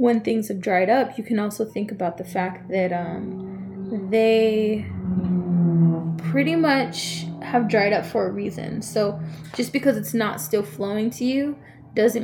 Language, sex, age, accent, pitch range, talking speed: English, female, 20-39, American, 190-225 Hz, 160 wpm